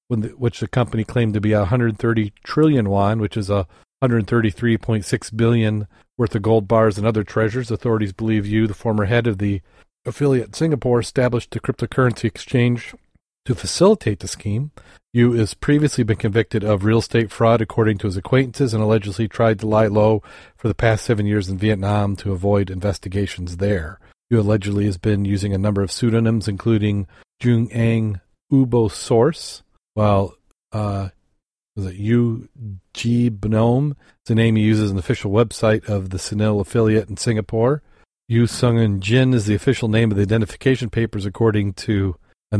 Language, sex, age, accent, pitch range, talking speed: English, male, 40-59, American, 100-115 Hz, 170 wpm